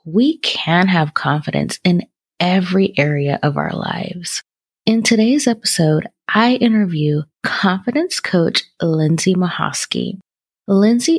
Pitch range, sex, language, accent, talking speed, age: 160-215 Hz, female, English, American, 105 wpm, 20-39